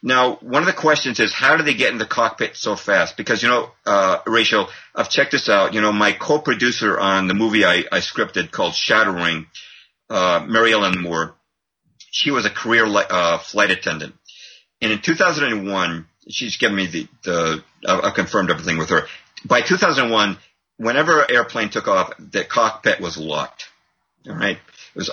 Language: English